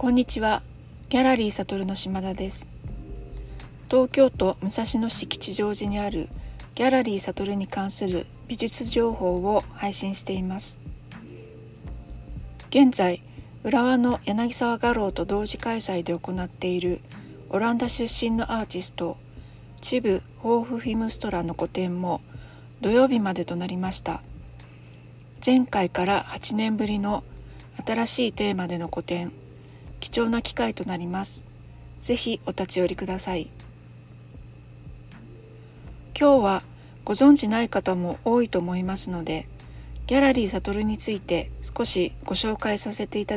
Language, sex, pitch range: Japanese, female, 170-225 Hz